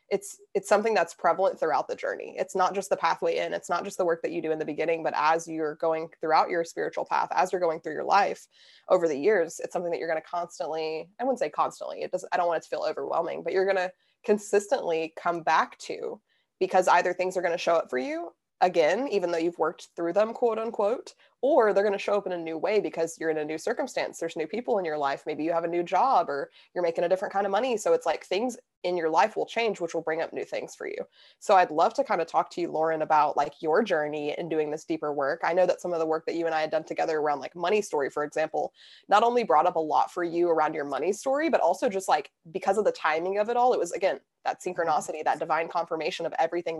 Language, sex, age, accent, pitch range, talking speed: English, female, 20-39, American, 160-210 Hz, 270 wpm